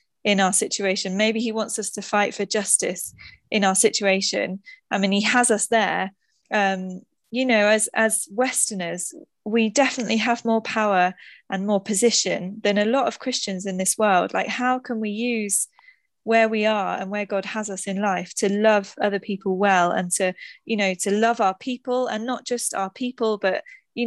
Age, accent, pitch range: 20-39, British, 195-230 Hz